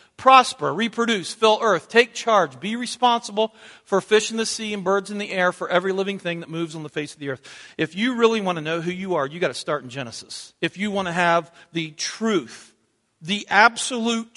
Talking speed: 225 wpm